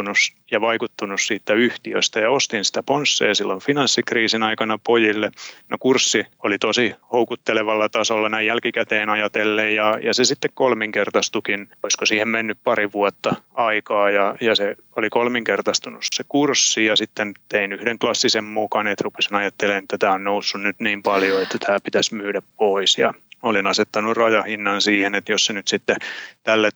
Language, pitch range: Finnish, 100-115 Hz